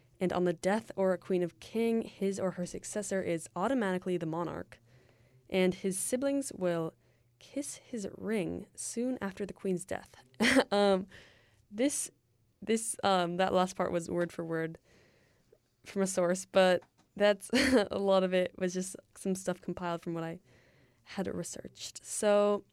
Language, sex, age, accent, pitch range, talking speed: English, female, 20-39, American, 160-190 Hz, 160 wpm